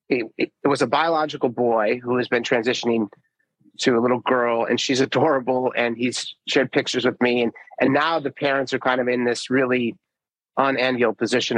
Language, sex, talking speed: English, male, 180 wpm